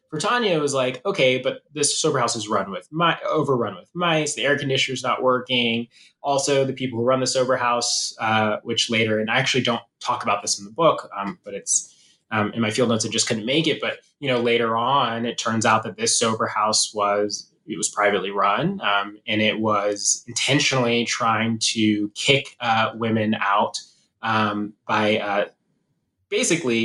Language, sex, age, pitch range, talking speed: English, male, 20-39, 110-130 Hz, 195 wpm